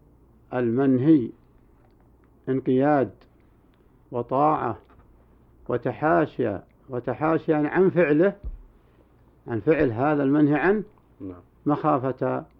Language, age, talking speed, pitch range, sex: Arabic, 60-79, 65 wpm, 100-150 Hz, male